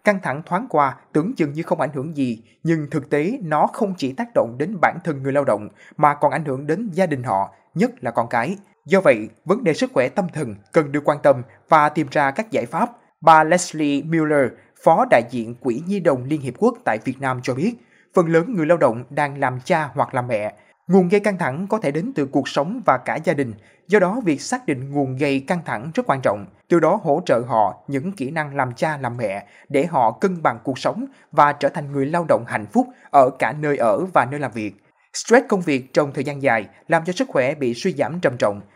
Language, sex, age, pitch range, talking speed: Vietnamese, male, 20-39, 135-185 Hz, 245 wpm